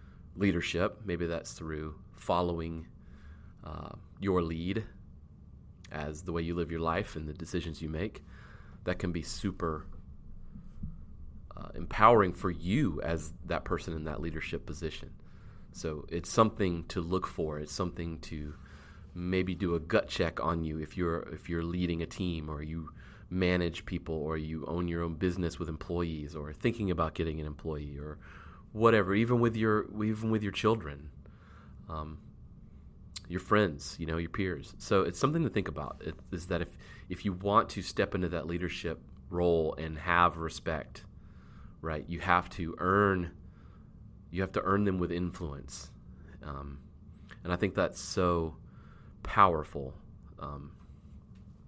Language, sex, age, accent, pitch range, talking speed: English, male, 30-49, American, 80-95 Hz, 155 wpm